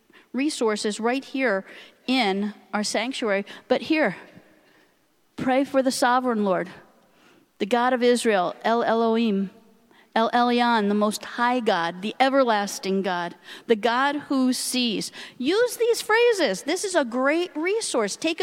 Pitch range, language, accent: 220-285 Hz, English, American